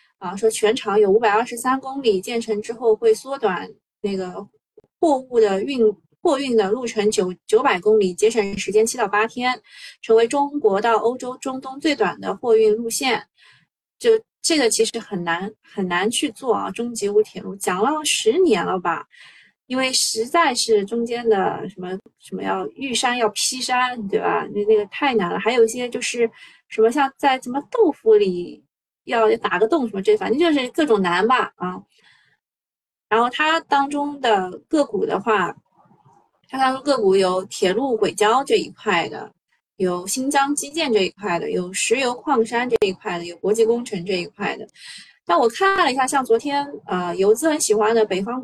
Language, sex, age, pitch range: Chinese, female, 20-39, 210-280 Hz